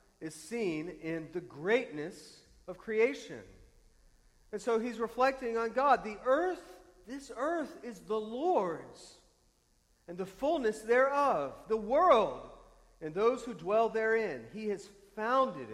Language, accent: English, American